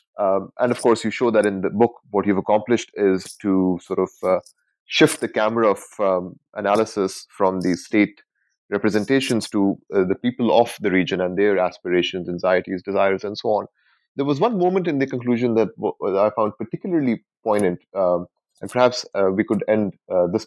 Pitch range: 95-115 Hz